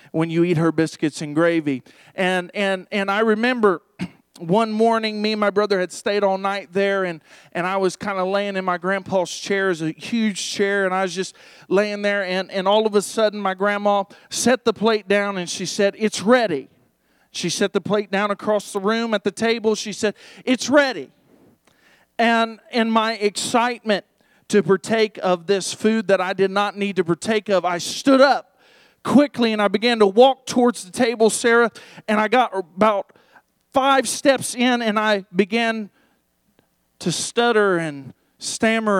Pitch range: 190-230 Hz